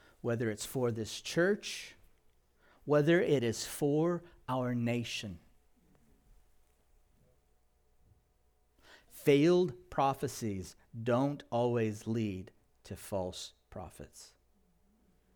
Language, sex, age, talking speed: English, male, 50-69, 75 wpm